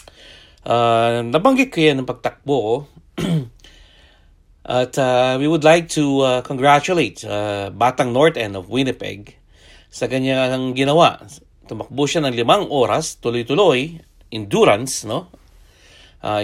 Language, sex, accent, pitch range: English, male, Filipino, 100-145 Hz